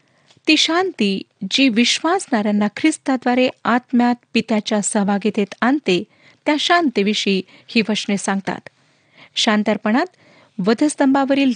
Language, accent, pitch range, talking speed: Marathi, native, 200-265 Hz, 85 wpm